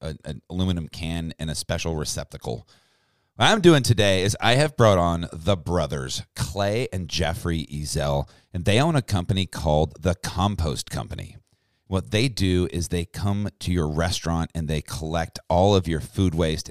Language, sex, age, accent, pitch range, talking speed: English, male, 40-59, American, 80-105 Hz, 170 wpm